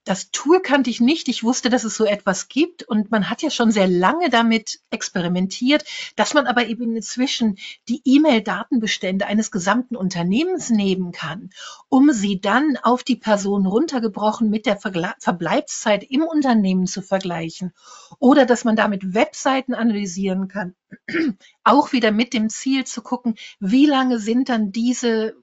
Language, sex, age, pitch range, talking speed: German, female, 60-79, 220-275 Hz, 160 wpm